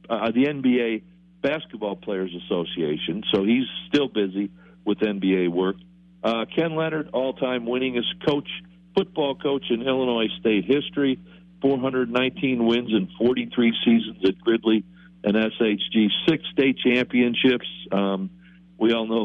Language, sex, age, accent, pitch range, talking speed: English, male, 60-79, American, 110-160 Hz, 130 wpm